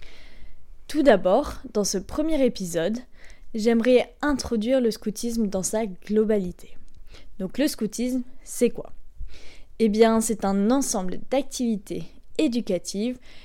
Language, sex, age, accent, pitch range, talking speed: French, female, 10-29, French, 190-250 Hz, 110 wpm